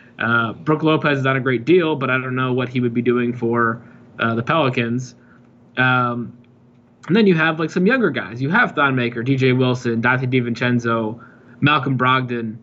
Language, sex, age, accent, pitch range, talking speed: English, male, 20-39, American, 120-155 Hz, 185 wpm